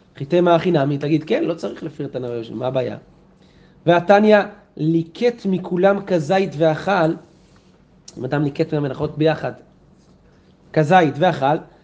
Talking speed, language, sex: 115 wpm, Hebrew, male